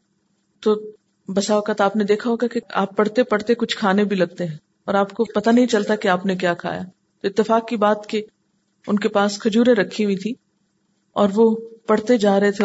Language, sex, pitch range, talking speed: Urdu, female, 185-215 Hz, 215 wpm